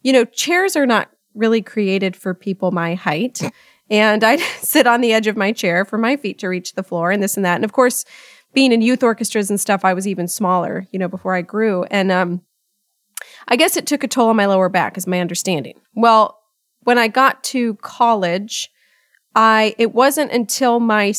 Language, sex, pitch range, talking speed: English, female, 200-260 Hz, 210 wpm